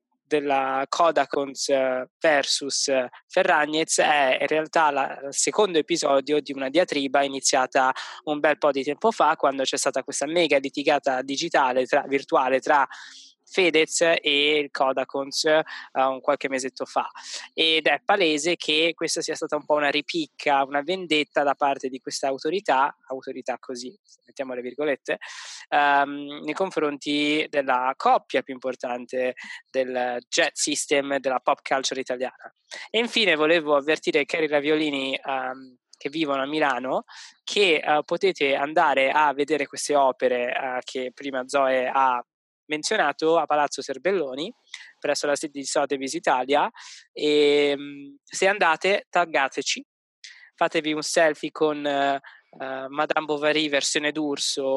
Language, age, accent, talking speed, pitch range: Italian, 20-39, native, 135 wpm, 135-155 Hz